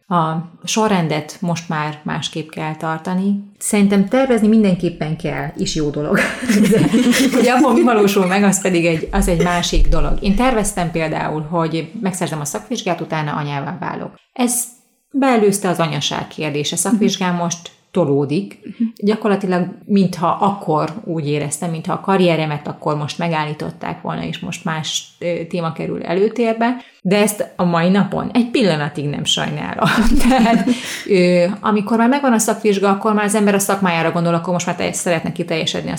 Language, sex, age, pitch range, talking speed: Hungarian, female, 30-49, 160-205 Hz, 155 wpm